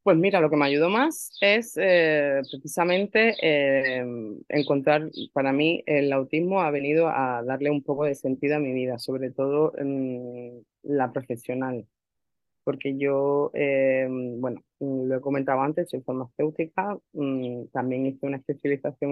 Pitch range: 135-165 Hz